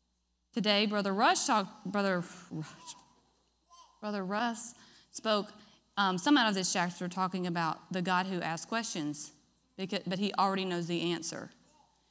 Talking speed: 135 wpm